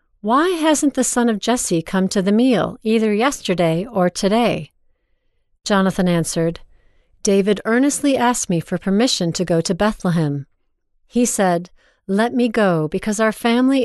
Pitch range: 185-240 Hz